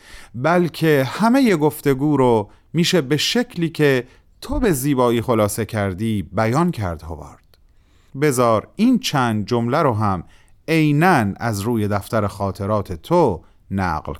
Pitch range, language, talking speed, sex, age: 100-150 Hz, Persian, 125 wpm, male, 30-49